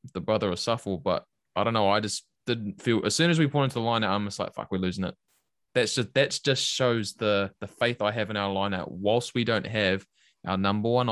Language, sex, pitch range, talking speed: English, male, 100-130 Hz, 260 wpm